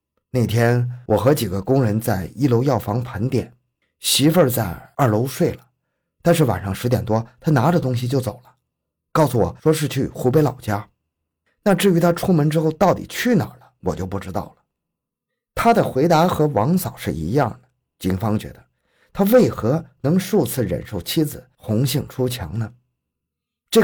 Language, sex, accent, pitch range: Chinese, male, native, 105-145 Hz